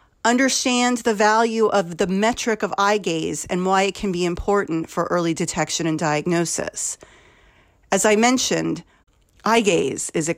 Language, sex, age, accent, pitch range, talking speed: English, female, 40-59, American, 180-245 Hz, 155 wpm